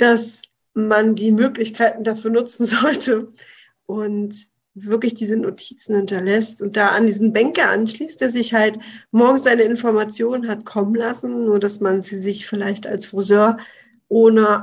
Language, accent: German, German